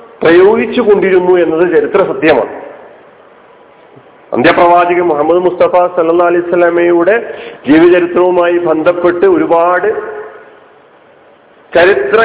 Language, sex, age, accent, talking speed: Malayalam, male, 40-59, native, 70 wpm